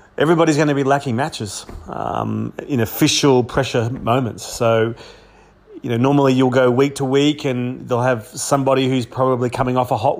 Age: 30-49